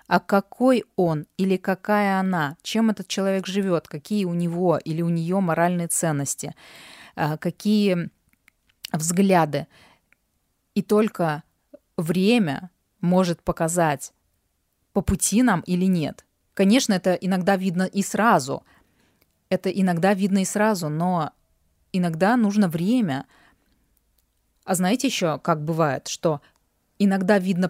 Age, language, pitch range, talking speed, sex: 20-39, Russian, 170-205 Hz, 115 wpm, female